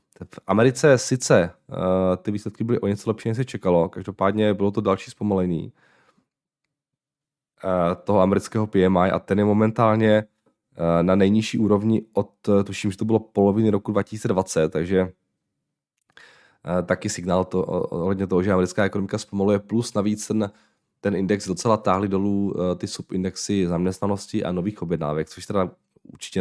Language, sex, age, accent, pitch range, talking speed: Czech, male, 20-39, native, 90-105 Hz, 135 wpm